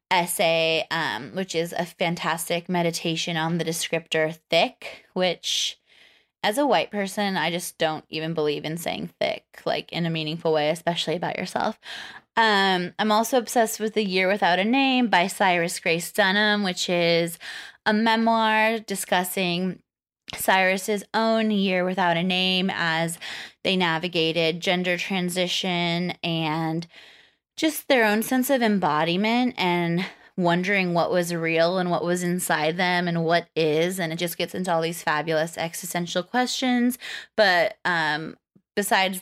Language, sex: English, female